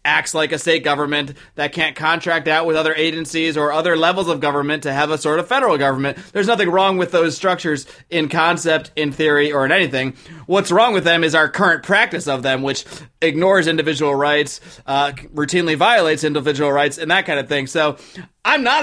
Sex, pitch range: male, 150-185 Hz